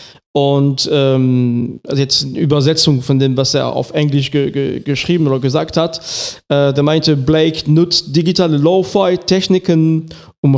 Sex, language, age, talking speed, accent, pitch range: male, German, 40-59, 145 wpm, German, 140-170 Hz